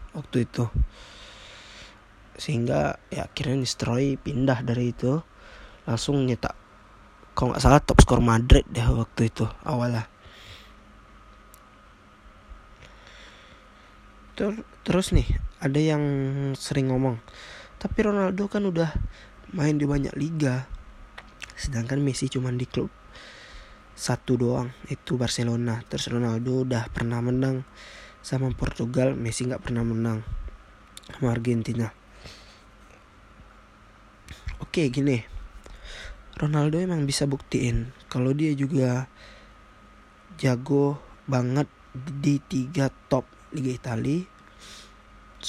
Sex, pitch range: male, 105-135 Hz